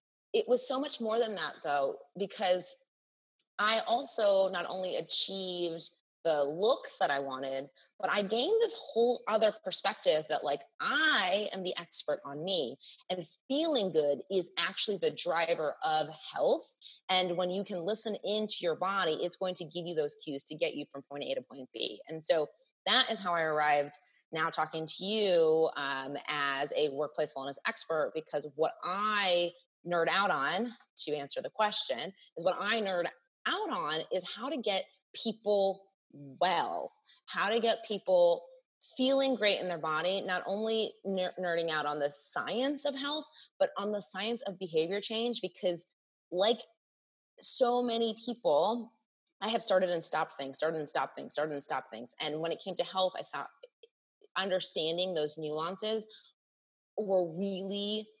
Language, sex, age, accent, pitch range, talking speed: English, female, 20-39, American, 160-230 Hz, 170 wpm